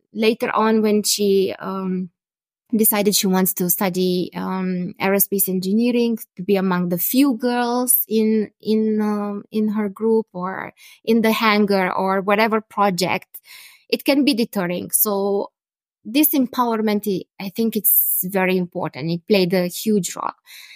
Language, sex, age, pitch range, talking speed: English, female, 20-39, 195-240 Hz, 140 wpm